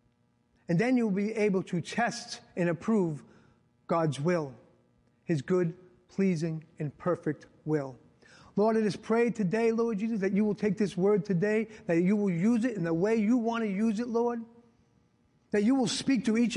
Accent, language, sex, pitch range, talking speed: American, English, male, 170-225 Hz, 185 wpm